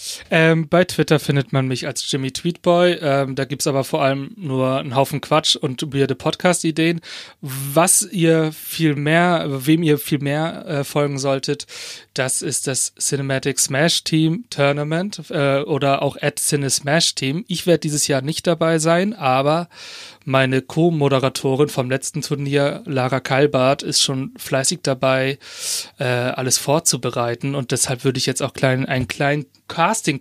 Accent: German